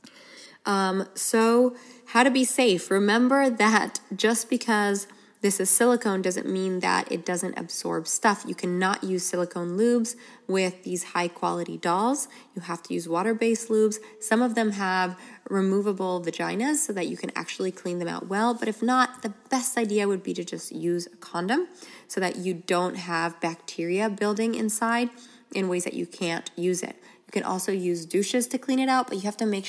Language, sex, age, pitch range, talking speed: English, female, 20-39, 175-225 Hz, 190 wpm